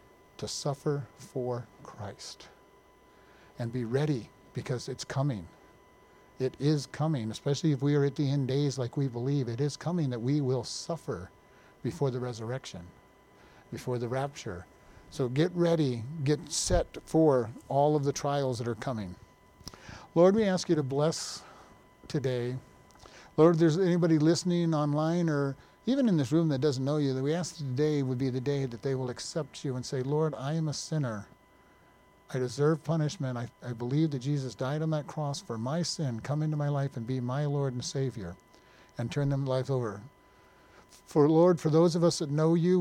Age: 50-69